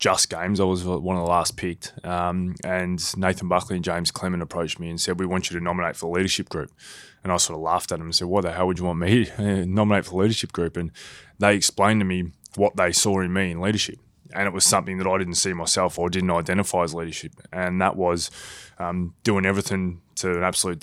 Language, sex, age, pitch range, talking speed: English, male, 20-39, 90-95 Hz, 250 wpm